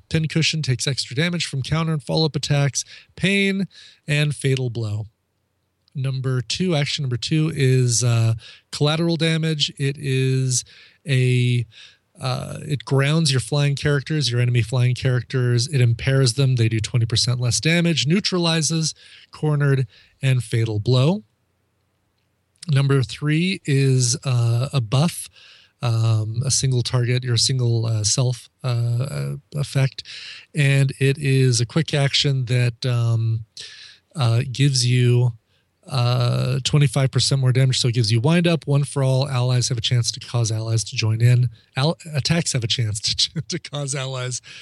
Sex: male